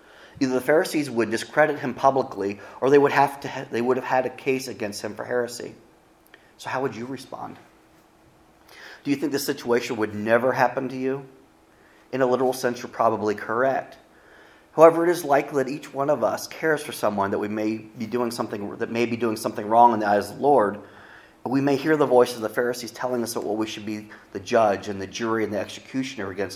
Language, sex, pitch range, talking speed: English, male, 110-135 Hz, 225 wpm